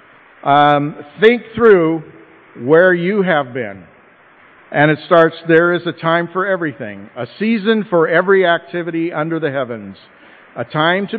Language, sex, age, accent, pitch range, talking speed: English, male, 50-69, American, 135-170 Hz, 145 wpm